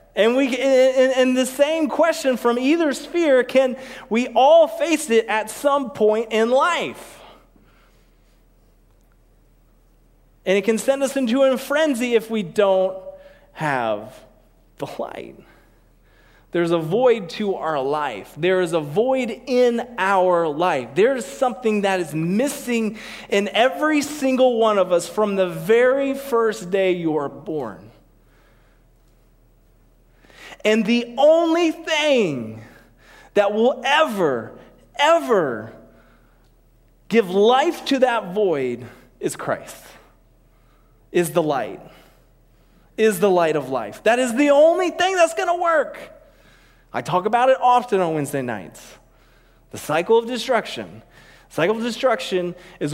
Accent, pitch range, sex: American, 190-270 Hz, male